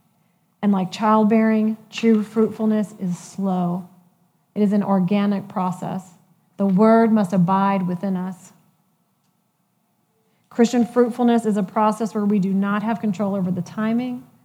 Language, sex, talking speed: English, female, 135 wpm